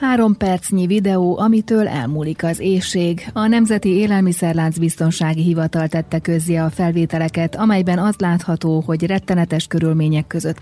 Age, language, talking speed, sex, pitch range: 30-49, Hungarian, 130 wpm, female, 160-185 Hz